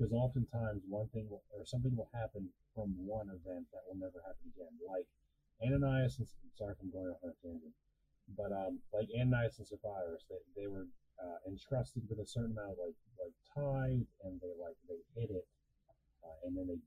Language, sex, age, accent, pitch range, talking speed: English, male, 30-49, American, 90-120 Hz, 180 wpm